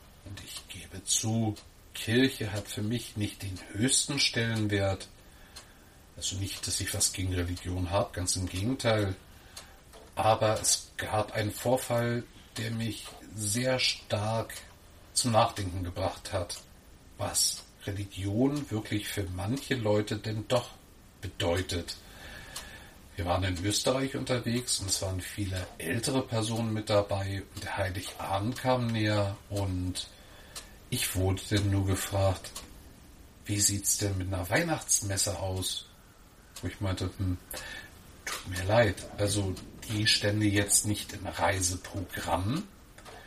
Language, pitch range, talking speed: German, 95-110 Hz, 125 wpm